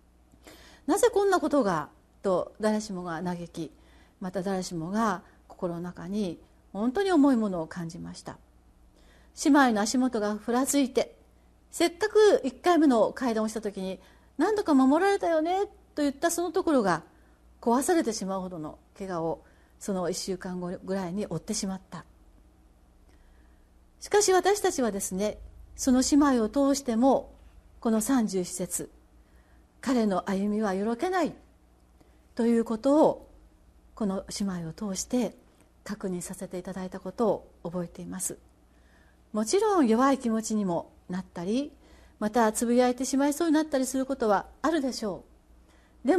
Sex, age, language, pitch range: female, 40-59, Japanese, 170-265 Hz